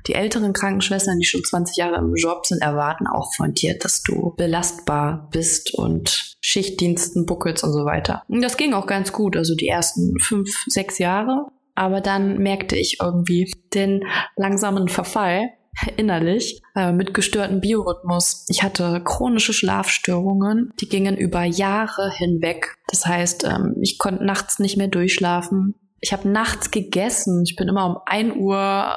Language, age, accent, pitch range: English, 20-39, German, 175-210 Hz